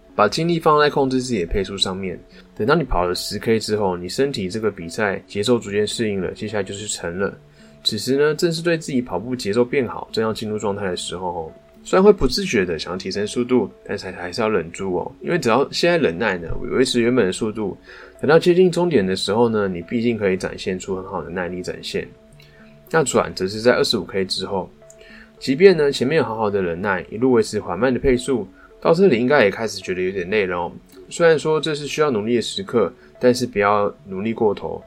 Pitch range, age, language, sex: 95-130 Hz, 20-39, Chinese, male